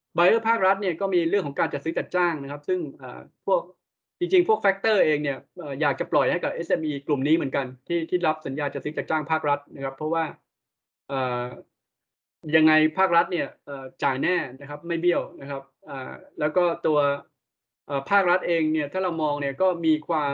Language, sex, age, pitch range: Thai, male, 20-39, 140-175 Hz